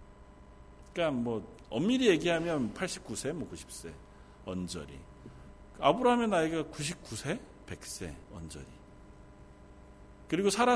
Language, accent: Korean, native